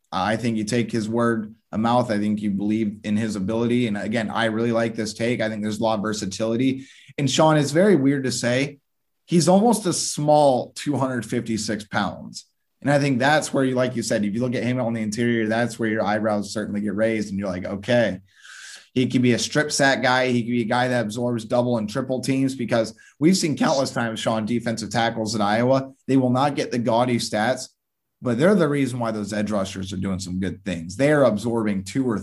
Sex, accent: male, American